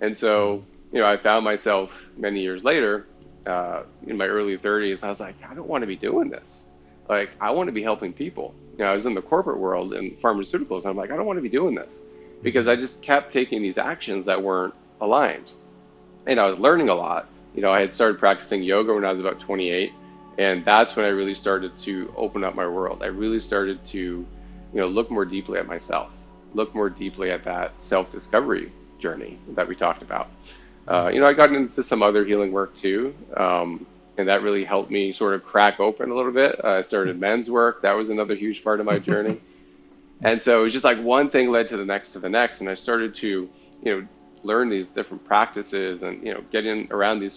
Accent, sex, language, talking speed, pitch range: American, male, English, 230 wpm, 90-110 Hz